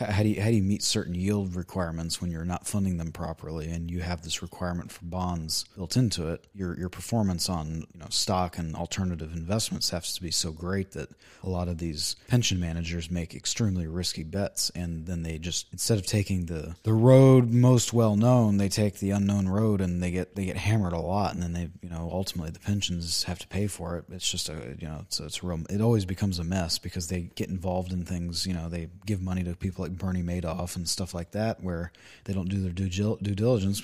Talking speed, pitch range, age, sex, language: 240 wpm, 85-100 Hz, 30-49, male, English